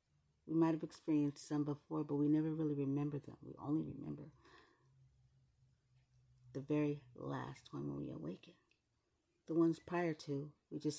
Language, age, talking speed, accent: English, 40-59, 155 wpm, American